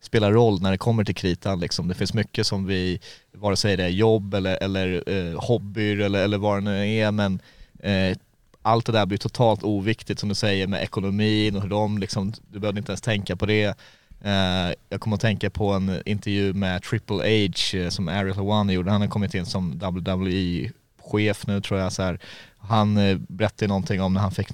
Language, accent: Swedish, native